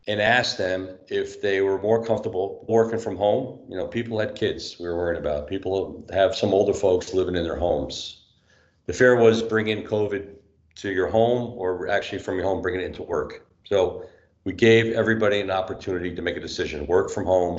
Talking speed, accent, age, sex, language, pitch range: 200 wpm, American, 50-69, male, English, 95-115 Hz